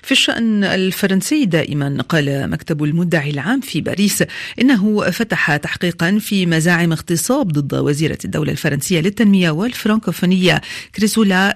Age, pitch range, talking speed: 40-59, 160-200 Hz, 120 wpm